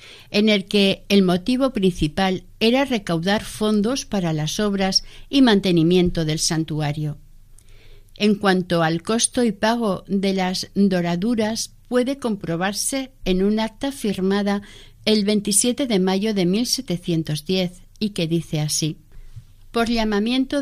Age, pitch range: 50-69, 180-235 Hz